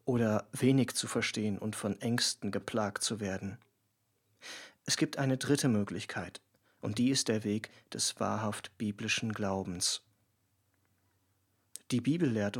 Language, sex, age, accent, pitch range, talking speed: German, male, 40-59, German, 105-125 Hz, 130 wpm